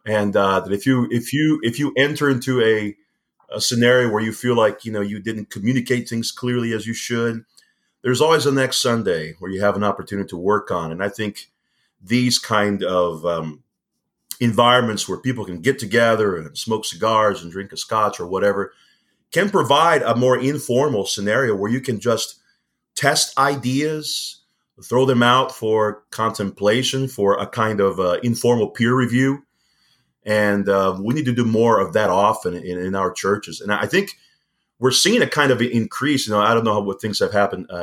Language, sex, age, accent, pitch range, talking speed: English, male, 30-49, American, 100-125 Hz, 190 wpm